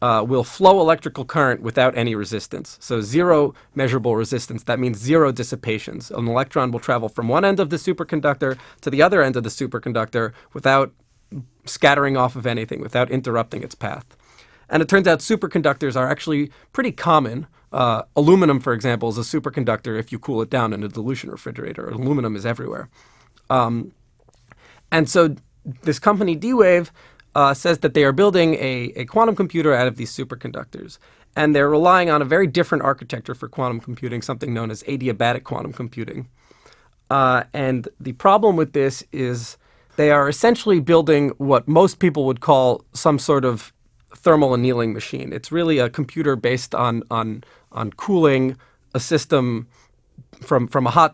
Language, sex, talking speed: English, male, 170 wpm